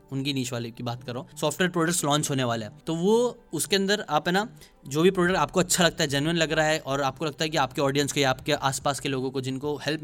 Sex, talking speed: male, 275 wpm